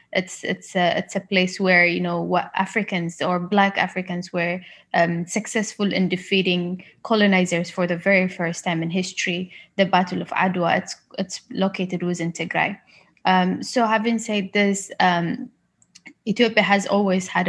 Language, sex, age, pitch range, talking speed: English, female, 20-39, 180-205 Hz, 155 wpm